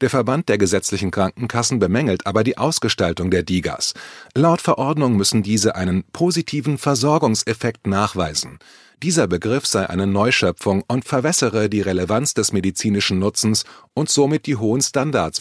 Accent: German